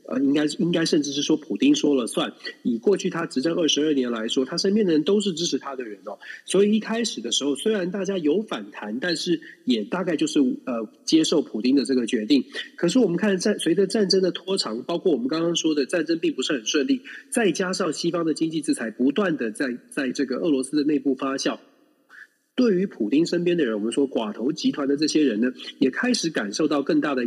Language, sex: Chinese, male